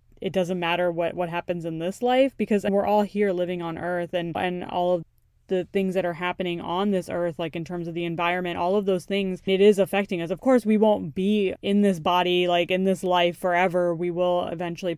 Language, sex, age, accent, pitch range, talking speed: English, female, 20-39, American, 175-200 Hz, 230 wpm